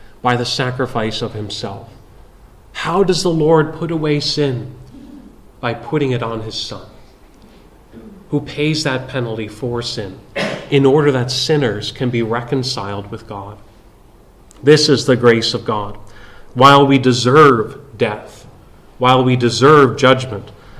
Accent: American